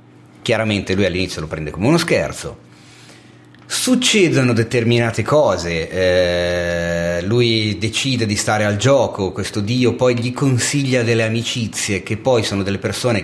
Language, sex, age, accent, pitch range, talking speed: Italian, male, 30-49, native, 90-120 Hz, 135 wpm